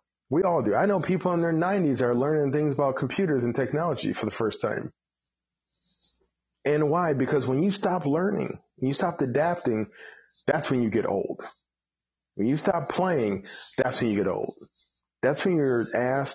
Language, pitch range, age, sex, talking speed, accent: English, 105-145 Hz, 40-59, male, 180 wpm, American